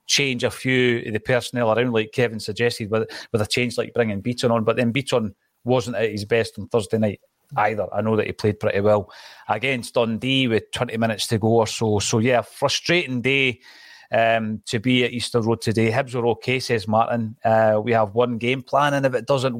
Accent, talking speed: British, 215 wpm